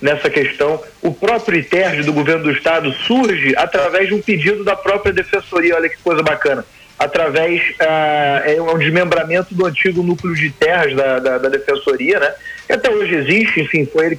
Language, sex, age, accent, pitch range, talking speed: Portuguese, male, 40-59, Brazilian, 160-215 Hz, 180 wpm